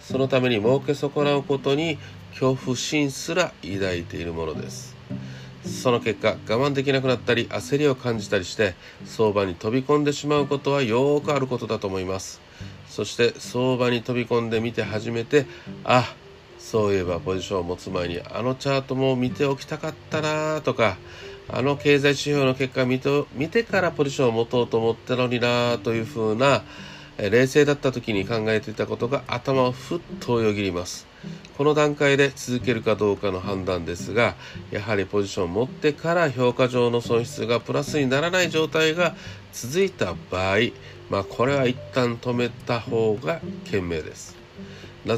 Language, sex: Japanese, male